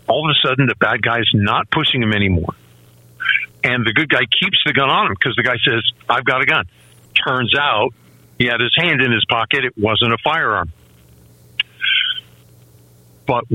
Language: English